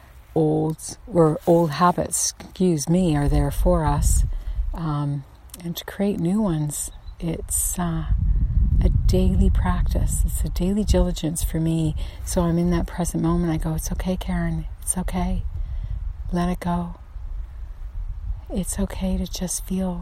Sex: female